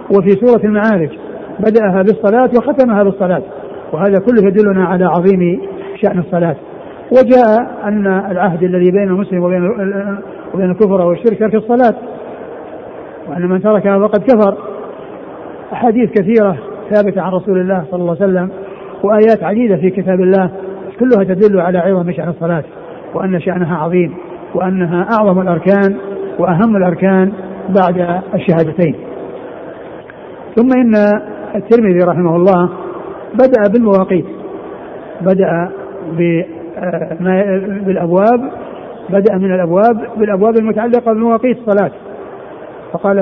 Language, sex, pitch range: Arabic, male, 185-215 Hz